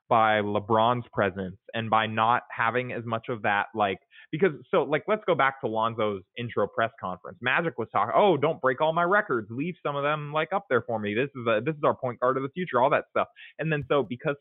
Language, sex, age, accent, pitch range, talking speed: English, male, 20-39, American, 110-140 Hz, 245 wpm